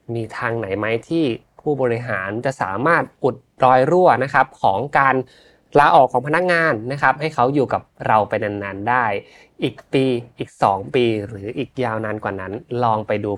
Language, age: Thai, 20-39